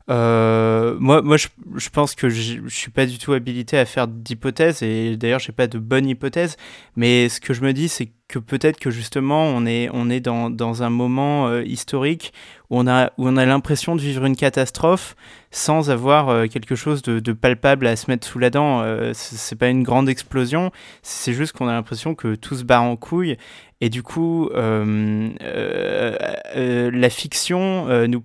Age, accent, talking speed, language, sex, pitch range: 20-39, French, 210 wpm, French, male, 115-140 Hz